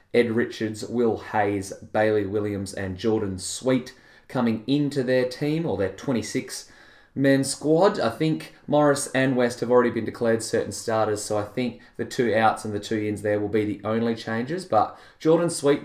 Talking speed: 180 wpm